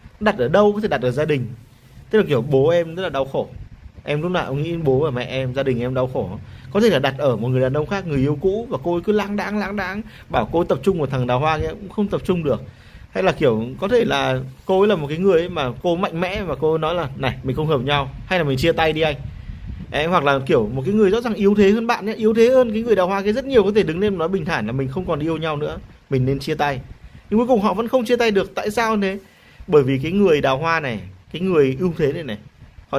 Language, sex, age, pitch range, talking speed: Vietnamese, male, 20-39, 130-200 Hz, 305 wpm